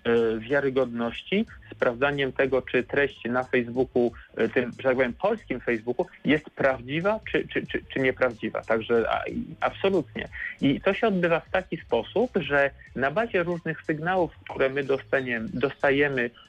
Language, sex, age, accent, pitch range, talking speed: Polish, male, 40-59, native, 130-175 Hz, 130 wpm